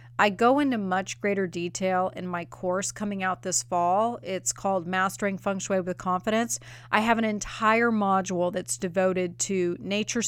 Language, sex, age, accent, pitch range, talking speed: English, female, 30-49, American, 175-205 Hz, 170 wpm